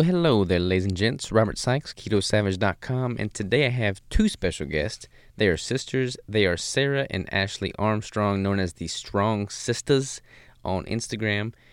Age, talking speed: 20-39, 165 wpm